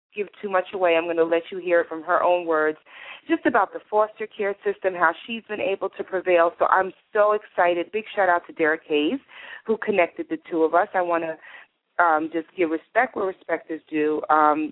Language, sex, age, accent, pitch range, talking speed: English, female, 30-49, American, 160-200 Hz, 220 wpm